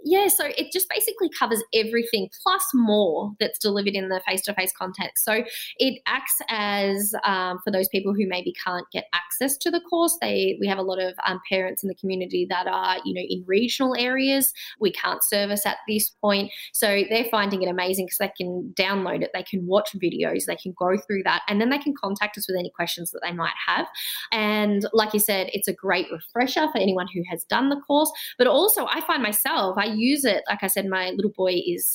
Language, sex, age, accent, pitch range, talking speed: English, female, 20-39, Australian, 185-245 Hz, 220 wpm